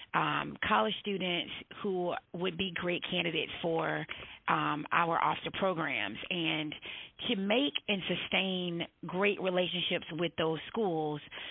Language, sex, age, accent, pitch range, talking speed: English, female, 30-49, American, 165-190 Hz, 120 wpm